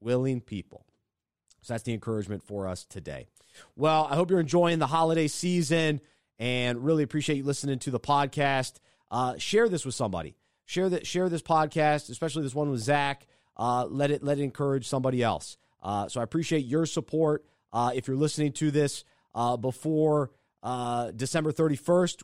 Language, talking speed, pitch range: English, 175 wpm, 125-155 Hz